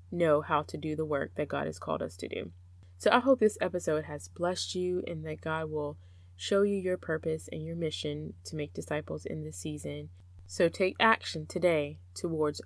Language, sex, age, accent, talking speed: English, female, 20-39, American, 205 wpm